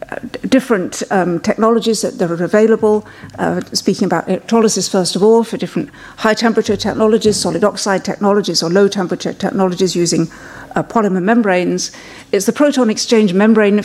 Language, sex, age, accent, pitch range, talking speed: French, female, 50-69, British, 180-215 Hz, 140 wpm